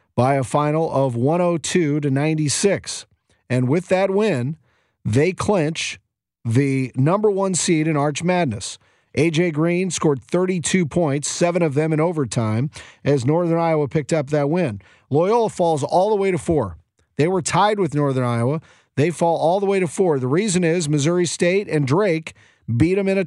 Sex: male